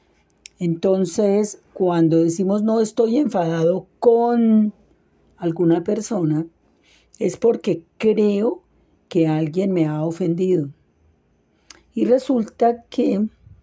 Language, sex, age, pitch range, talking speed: Spanish, female, 40-59, 165-205 Hz, 90 wpm